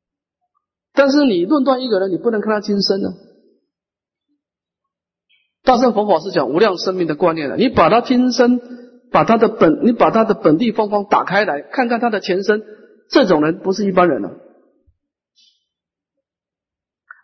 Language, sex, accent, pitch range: Chinese, male, native, 185-270 Hz